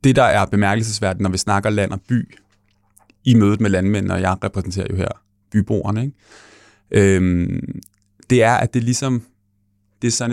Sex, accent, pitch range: male, native, 100-115 Hz